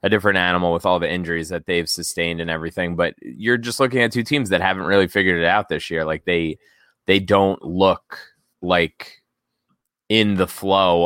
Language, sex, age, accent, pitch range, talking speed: English, male, 20-39, American, 85-105 Hz, 195 wpm